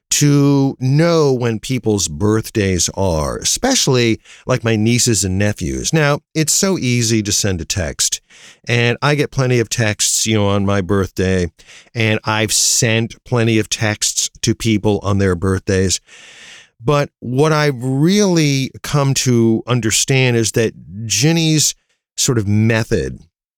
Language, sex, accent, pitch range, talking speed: English, male, American, 105-135 Hz, 140 wpm